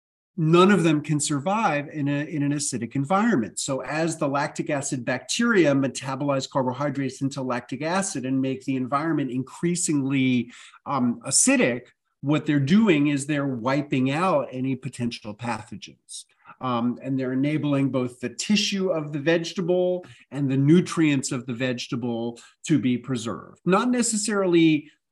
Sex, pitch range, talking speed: male, 130-160 Hz, 140 wpm